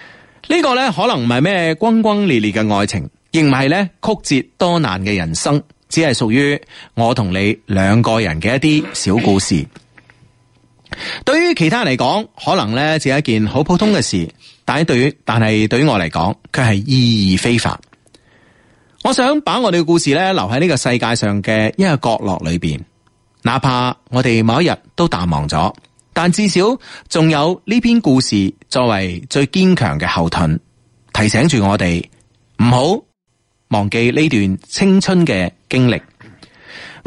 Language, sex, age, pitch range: Chinese, male, 30-49, 110-165 Hz